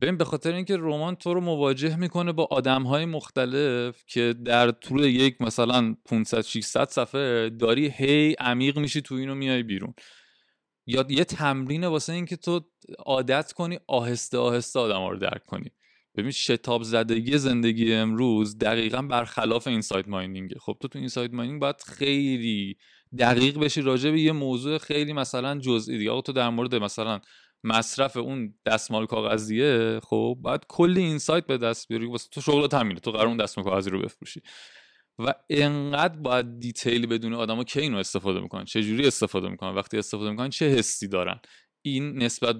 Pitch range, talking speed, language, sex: 115-140 Hz, 170 wpm, Persian, male